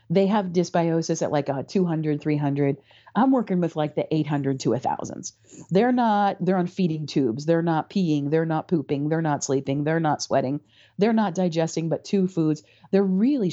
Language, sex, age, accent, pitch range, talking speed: English, female, 40-59, American, 150-195 Hz, 190 wpm